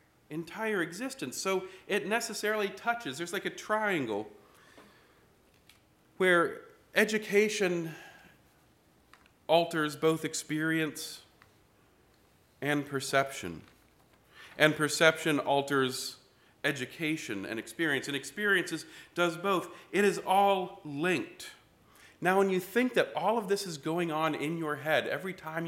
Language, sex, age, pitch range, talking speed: English, male, 40-59, 140-195 Hz, 110 wpm